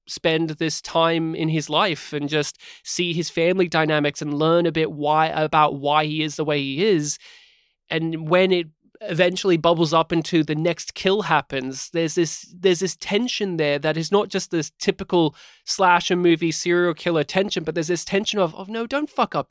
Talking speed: 195 wpm